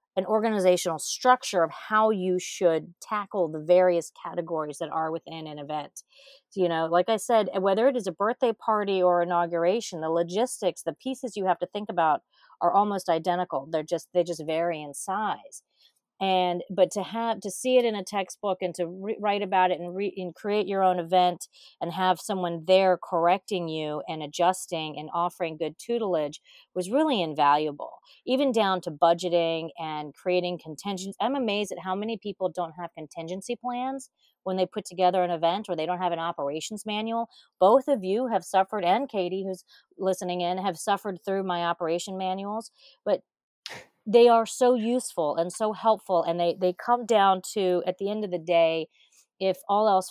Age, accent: 40-59, American